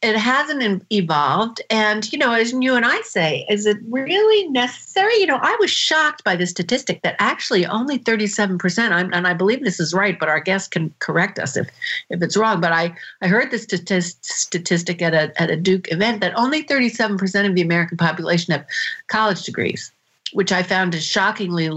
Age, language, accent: 50-69, English, American